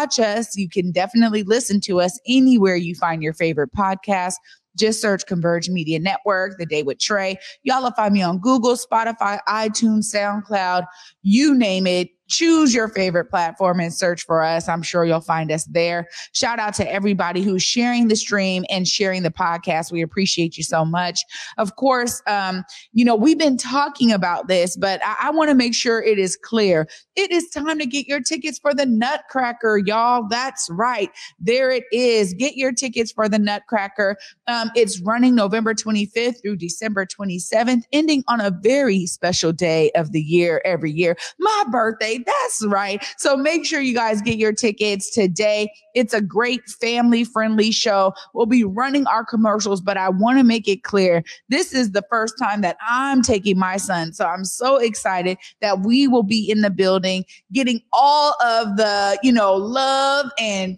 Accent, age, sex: American, 30-49, female